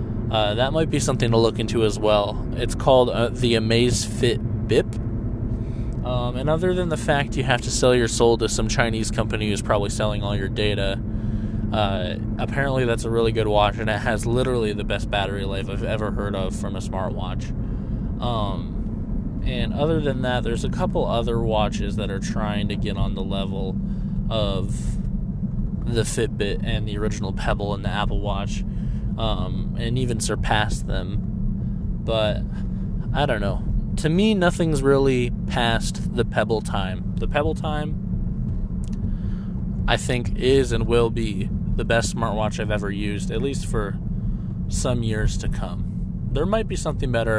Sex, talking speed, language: male, 170 wpm, English